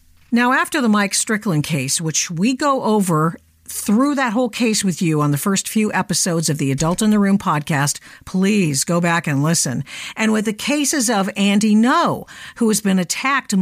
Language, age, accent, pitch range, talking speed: English, 50-69, American, 165-230 Hz, 195 wpm